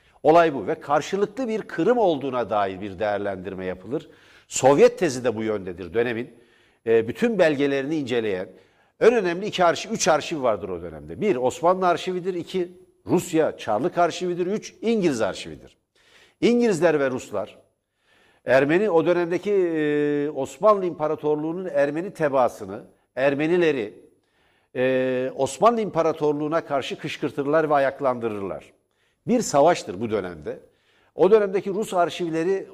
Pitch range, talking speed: 145-195 Hz, 115 wpm